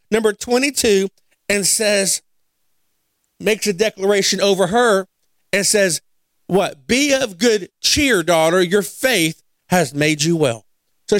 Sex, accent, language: male, American, English